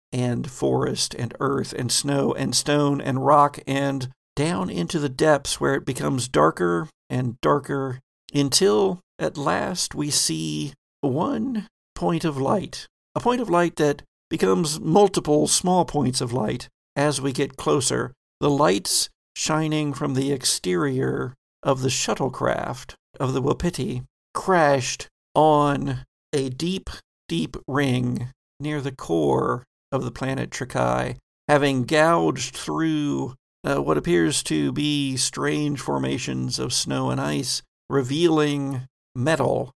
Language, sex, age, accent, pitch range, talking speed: English, male, 50-69, American, 120-155 Hz, 130 wpm